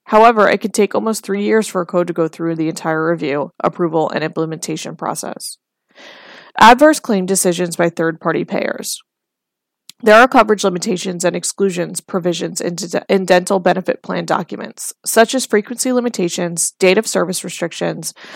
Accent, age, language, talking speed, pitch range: American, 20-39, English, 155 wpm, 175-210 Hz